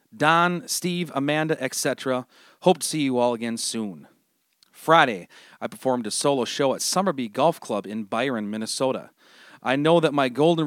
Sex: male